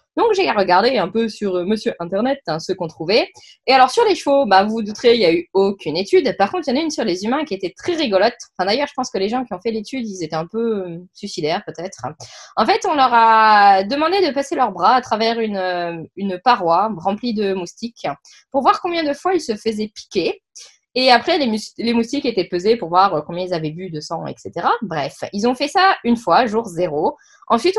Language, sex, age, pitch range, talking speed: French, female, 20-39, 190-275 Hz, 245 wpm